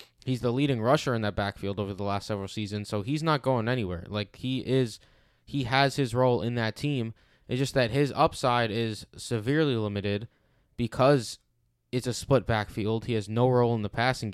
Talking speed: 195 wpm